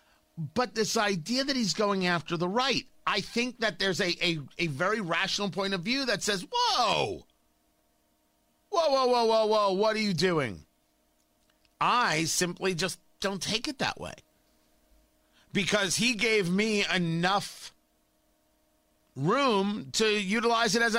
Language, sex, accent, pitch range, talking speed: English, male, American, 140-220 Hz, 145 wpm